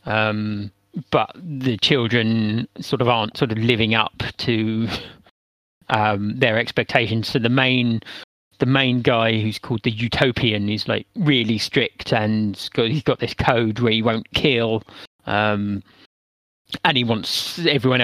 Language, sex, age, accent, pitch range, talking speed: English, male, 30-49, British, 105-125 Hz, 150 wpm